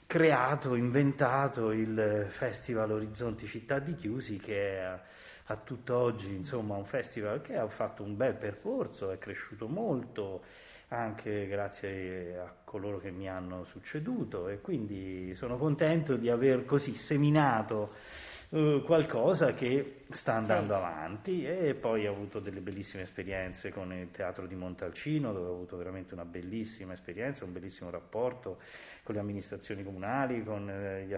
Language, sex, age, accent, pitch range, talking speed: Italian, male, 30-49, native, 100-135 Hz, 140 wpm